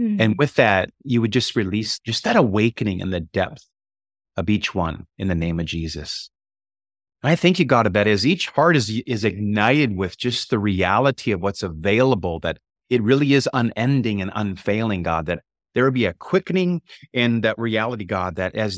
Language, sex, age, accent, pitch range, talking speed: English, male, 30-49, American, 95-130 Hz, 190 wpm